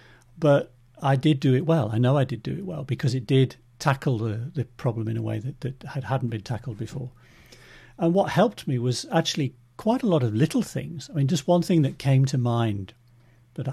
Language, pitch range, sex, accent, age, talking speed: English, 120-140 Hz, male, British, 50-69, 225 wpm